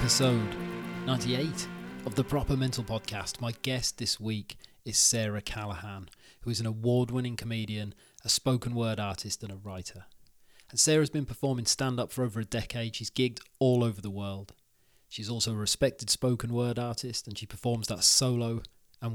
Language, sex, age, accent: English, male, 30-49, British